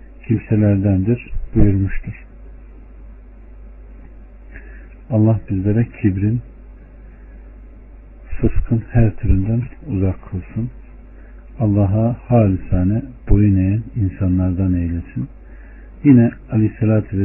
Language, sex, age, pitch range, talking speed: Turkish, male, 50-69, 100-120 Hz, 65 wpm